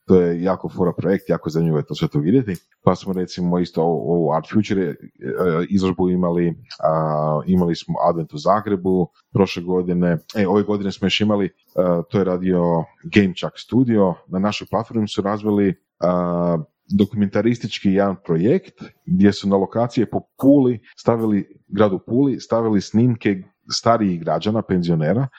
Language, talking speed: Croatian, 150 wpm